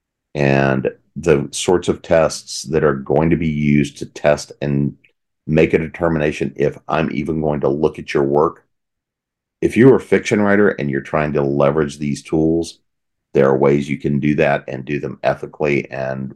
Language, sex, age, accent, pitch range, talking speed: English, male, 40-59, American, 70-80 Hz, 185 wpm